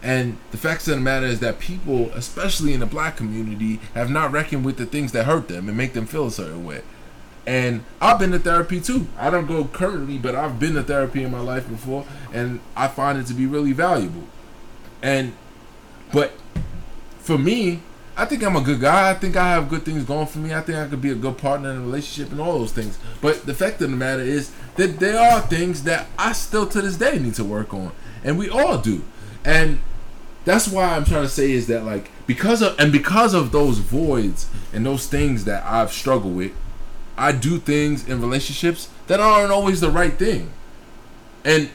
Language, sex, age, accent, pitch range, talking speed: English, male, 20-39, American, 120-165 Hz, 220 wpm